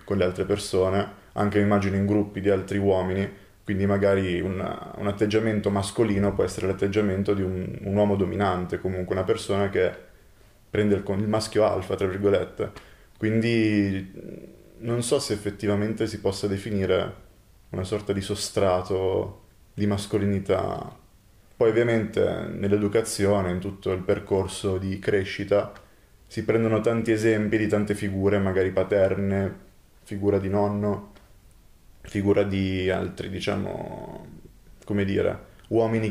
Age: 20-39